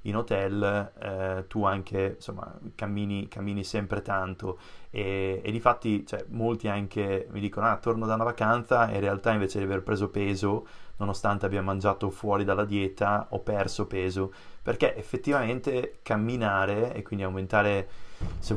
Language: Italian